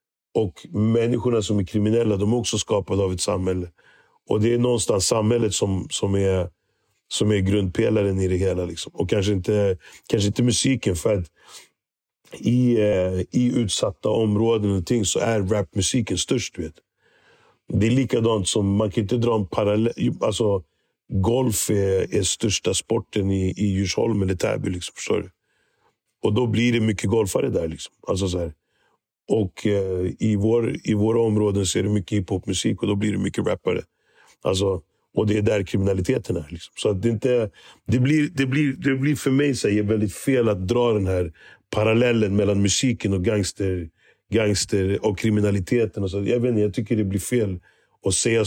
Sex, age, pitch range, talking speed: male, 60-79, 100-115 Hz, 180 wpm